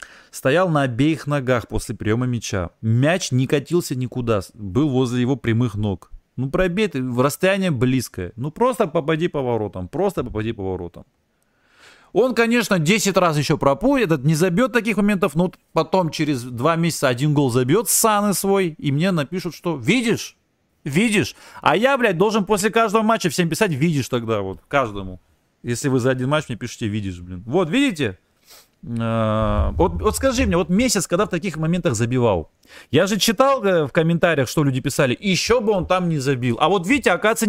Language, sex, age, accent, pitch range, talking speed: Russian, male, 30-49, native, 125-200 Hz, 180 wpm